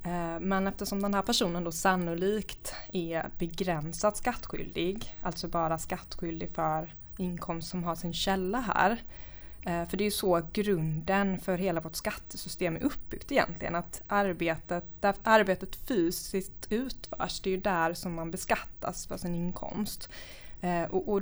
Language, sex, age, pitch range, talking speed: Swedish, female, 20-39, 175-205 Hz, 140 wpm